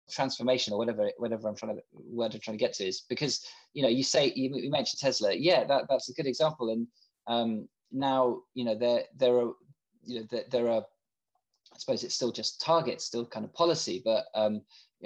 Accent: British